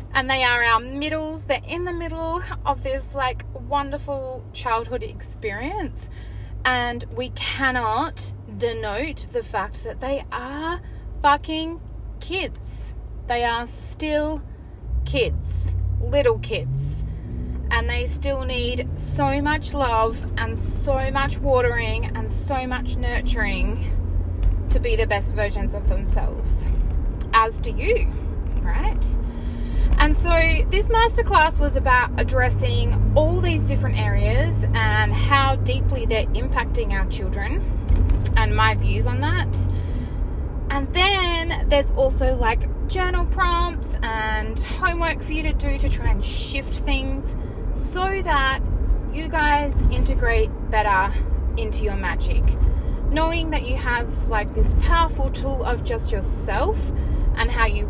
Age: 20-39